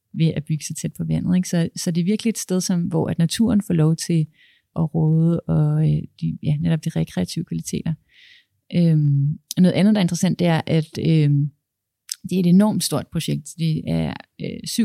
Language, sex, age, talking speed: Danish, female, 30-49, 200 wpm